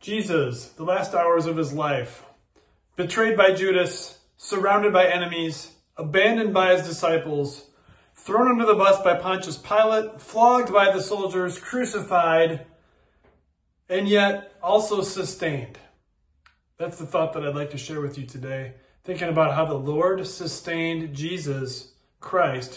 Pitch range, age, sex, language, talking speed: 160-205 Hz, 30-49, male, English, 135 wpm